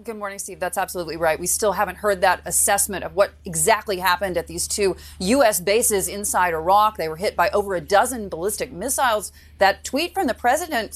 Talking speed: 205 wpm